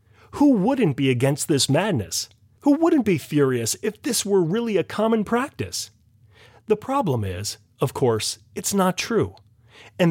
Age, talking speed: 30-49, 155 wpm